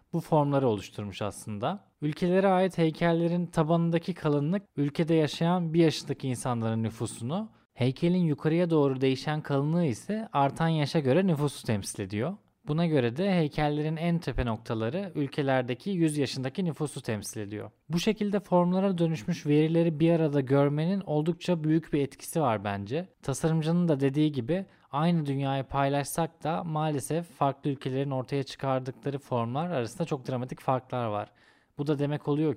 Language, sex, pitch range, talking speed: Turkish, male, 130-165 Hz, 140 wpm